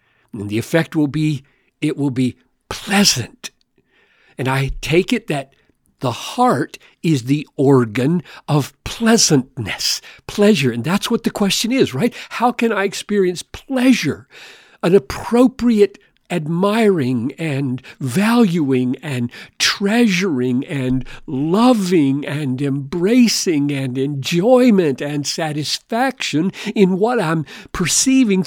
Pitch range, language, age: 135-210 Hz, English, 60-79